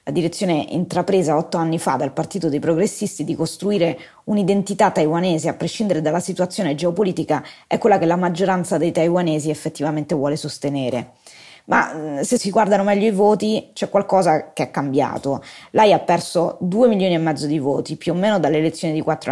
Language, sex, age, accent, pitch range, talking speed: Italian, female, 20-39, native, 160-190 Hz, 175 wpm